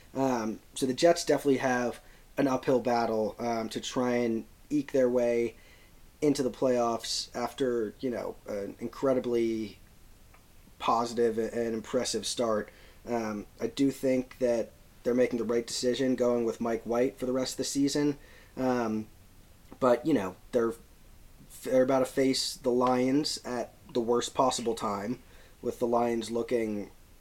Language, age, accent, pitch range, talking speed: English, 30-49, American, 115-135 Hz, 150 wpm